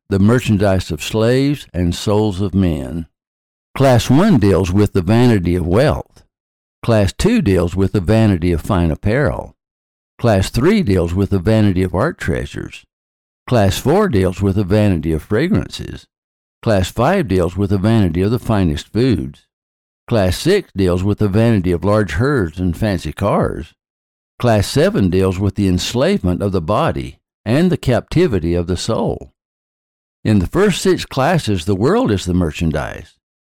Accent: American